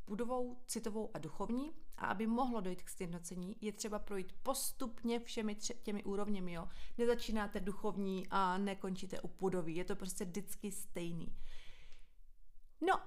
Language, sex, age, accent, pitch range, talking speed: Czech, female, 30-49, native, 190-240 Hz, 135 wpm